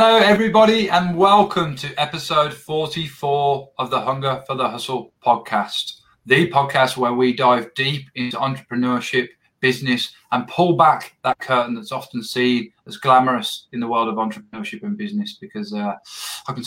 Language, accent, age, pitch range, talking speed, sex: English, British, 20-39, 120-145 Hz, 160 wpm, male